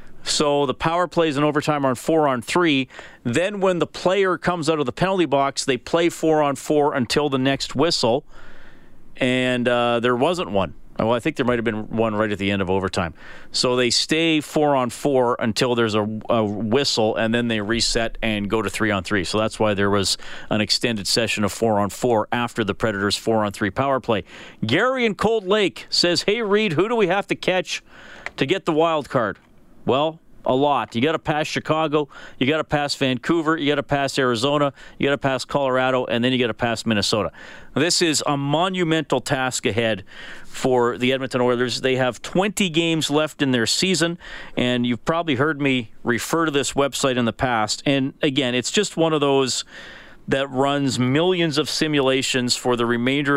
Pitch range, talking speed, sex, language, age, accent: 115-155 Hz, 200 wpm, male, English, 40-59, American